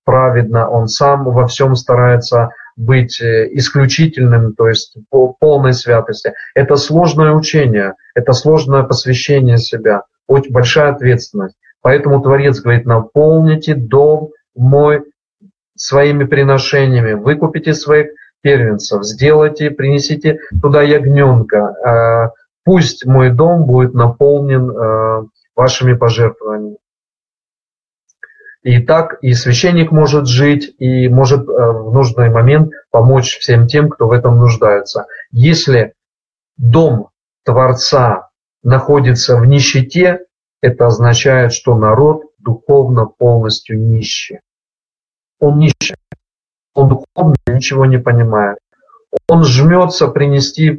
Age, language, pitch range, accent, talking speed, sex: 30-49, Russian, 120-150 Hz, native, 100 wpm, male